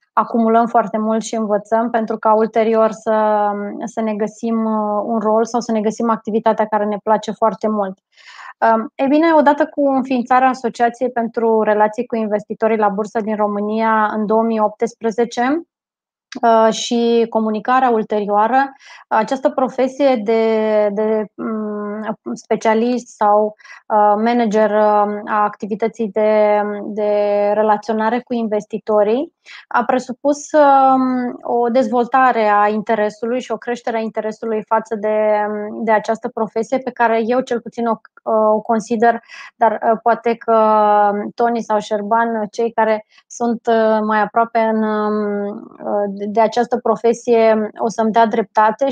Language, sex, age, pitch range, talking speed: Romanian, female, 20-39, 215-240 Hz, 120 wpm